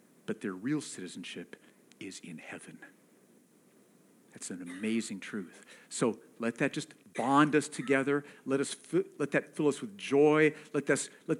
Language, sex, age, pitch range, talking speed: English, male, 50-69, 150-220 Hz, 155 wpm